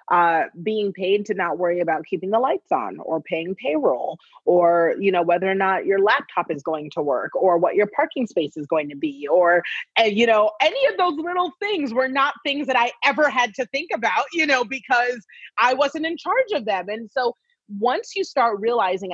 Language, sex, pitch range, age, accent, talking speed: English, female, 175-235 Hz, 30-49, American, 215 wpm